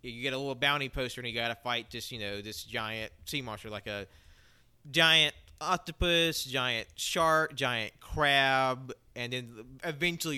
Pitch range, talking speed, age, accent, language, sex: 105-135 Hz, 170 wpm, 30-49, American, English, male